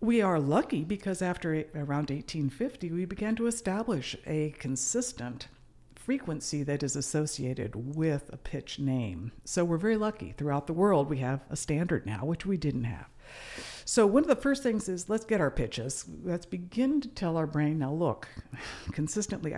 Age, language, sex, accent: 60-79, English, female, American